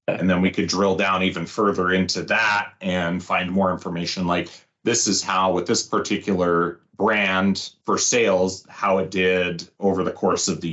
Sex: male